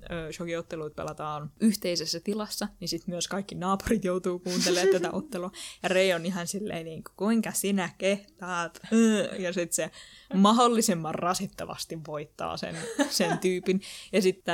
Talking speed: 130 wpm